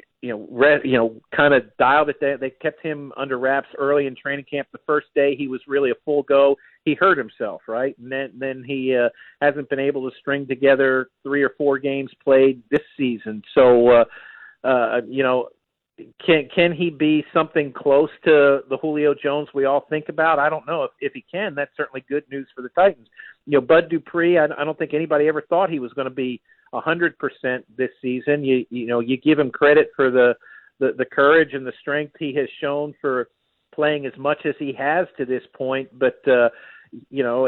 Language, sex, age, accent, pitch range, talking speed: English, male, 50-69, American, 135-155 Hz, 215 wpm